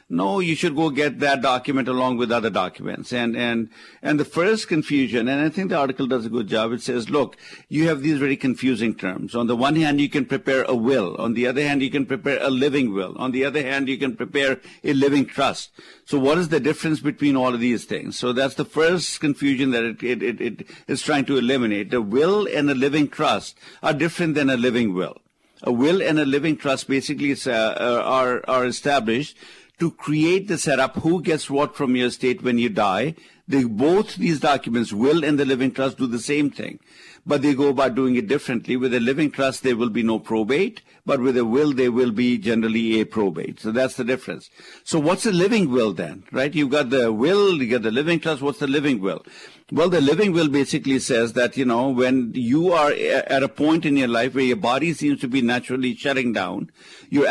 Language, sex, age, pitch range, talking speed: English, male, 50-69, 125-150 Hz, 225 wpm